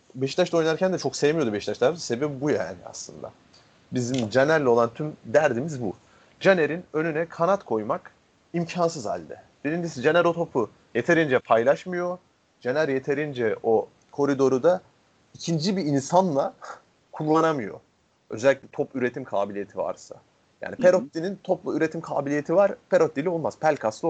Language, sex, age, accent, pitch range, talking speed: Turkish, male, 30-49, native, 120-180 Hz, 125 wpm